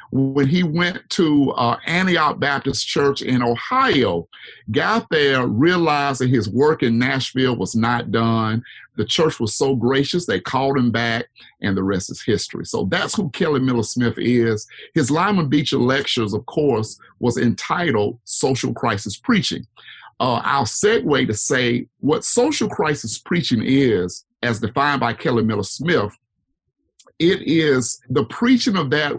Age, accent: 50-69, American